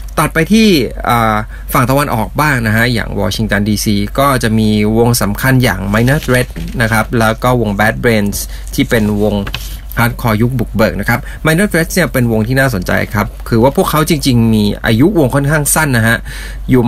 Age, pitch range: 20-39, 110-140 Hz